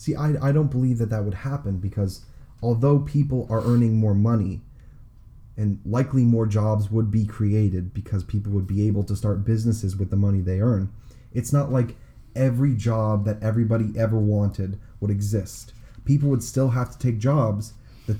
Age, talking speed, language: 20-39, 180 wpm, English